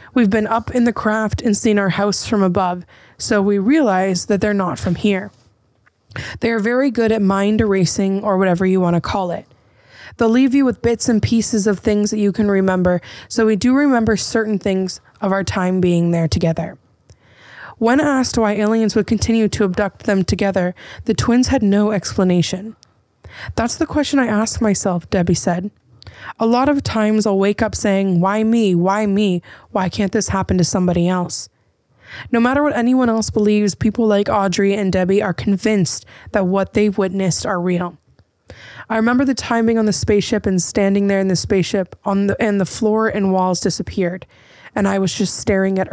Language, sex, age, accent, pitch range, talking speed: English, female, 20-39, American, 185-225 Hz, 190 wpm